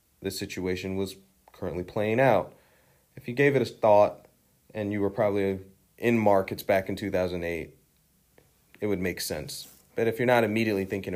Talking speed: 165 wpm